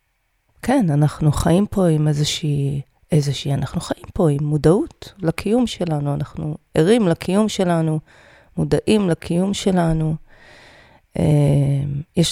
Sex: female